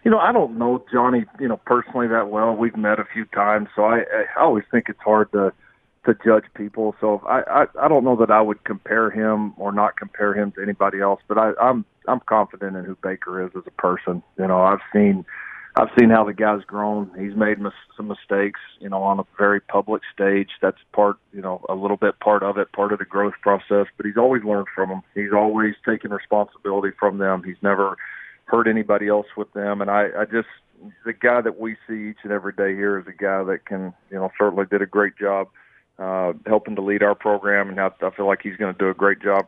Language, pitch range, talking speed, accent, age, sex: English, 100-105 Hz, 240 wpm, American, 40-59, male